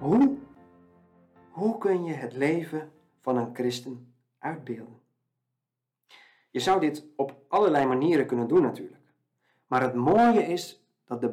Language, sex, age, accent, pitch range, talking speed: Dutch, male, 50-69, Dutch, 125-175 Hz, 130 wpm